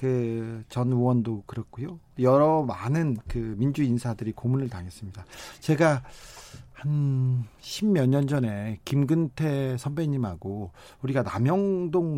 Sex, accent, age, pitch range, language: male, native, 40-59, 110-140 Hz, Korean